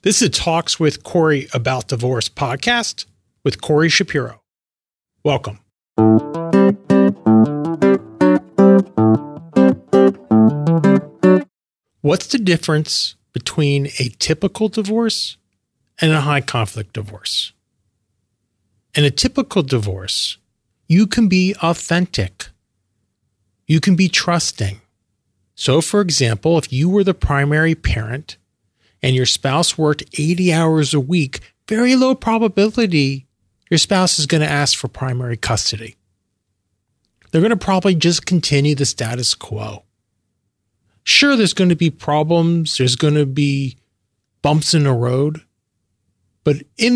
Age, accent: 40-59, American